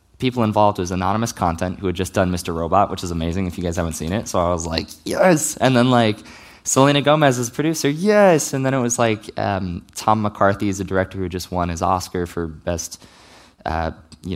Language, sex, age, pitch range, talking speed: English, male, 20-39, 80-95 Hz, 225 wpm